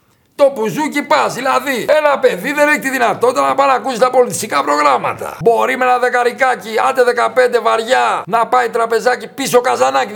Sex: male